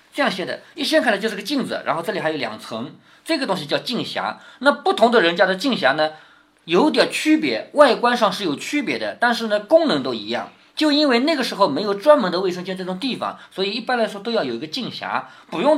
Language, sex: Chinese, male